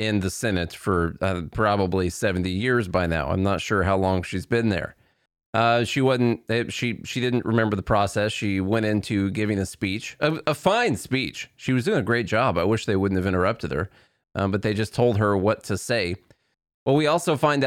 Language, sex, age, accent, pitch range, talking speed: English, male, 30-49, American, 105-130 Hz, 215 wpm